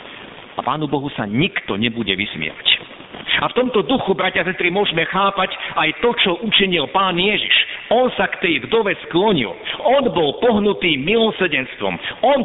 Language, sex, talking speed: Slovak, male, 155 wpm